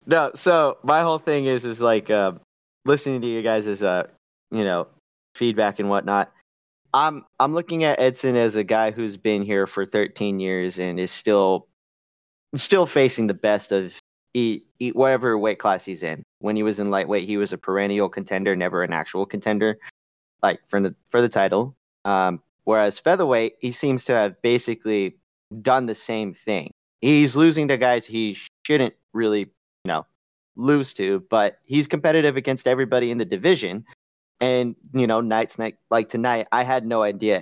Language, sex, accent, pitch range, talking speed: English, male, American, 100-125 Hz, 180 wpm